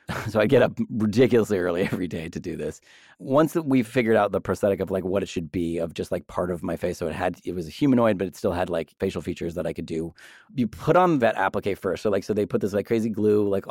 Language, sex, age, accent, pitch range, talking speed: English, male, 30-49, American, 95-120 Hz, 280 wpm